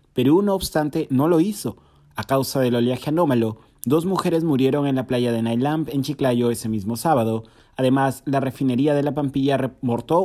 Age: 30-49